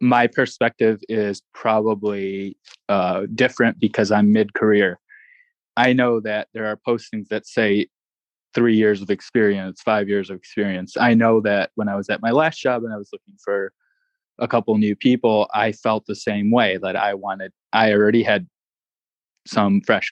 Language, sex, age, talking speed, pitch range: English, male, 20-39, 175 wpm, 100-120 Hz